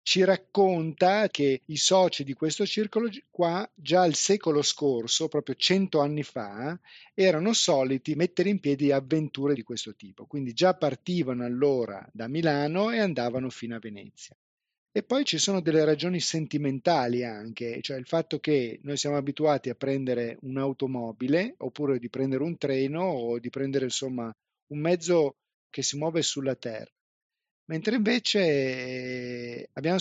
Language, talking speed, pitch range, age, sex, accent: Italian, 150 wpm, 125-170 Hz, 40-59, male, native